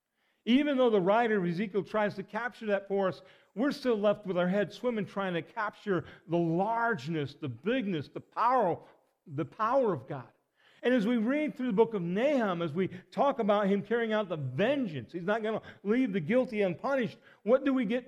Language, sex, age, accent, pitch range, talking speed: English, male, 50-69, American, 185-240 Hz, 205 wpm